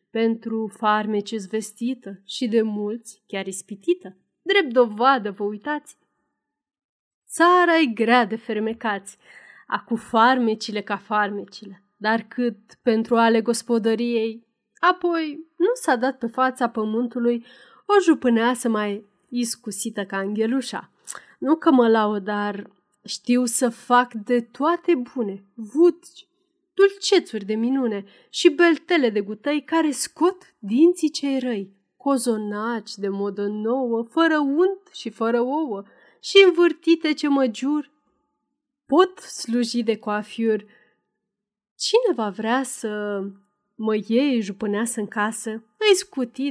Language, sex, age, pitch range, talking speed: Romanian, female, 30-49, 210-290 Hz, 120 wpm